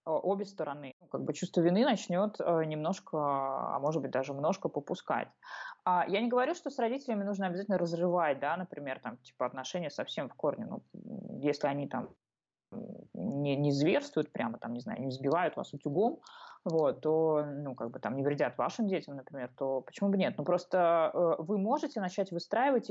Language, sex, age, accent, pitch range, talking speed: Russian, female, 20-39, native, 150-205 Hz, 185 wpm